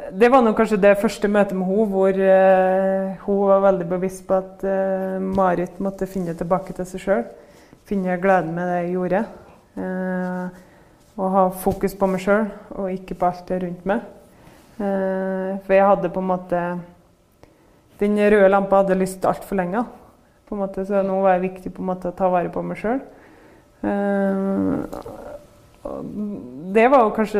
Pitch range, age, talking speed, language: 185-200 Hz, 20-39, 170 wpm, Swedish